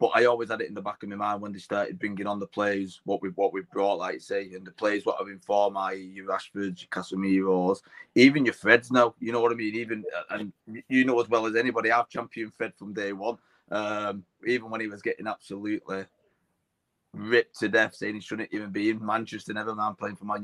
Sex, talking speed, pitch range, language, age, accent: male, 240 wpm, 100-110 Hz, English, 20-39, British